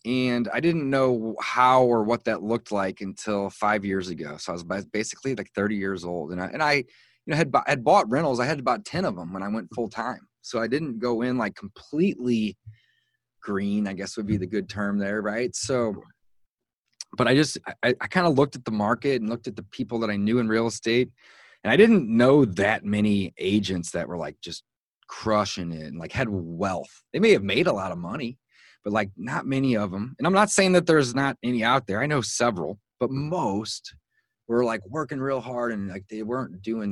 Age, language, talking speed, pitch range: 30-49, English, 230 wpm, 105-135 Hz